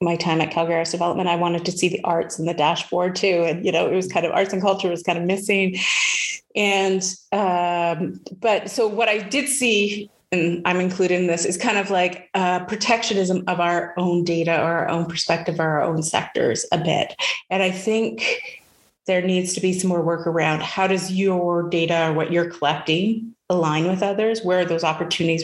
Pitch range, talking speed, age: 170-200 Hz, 210 wpm, 30-49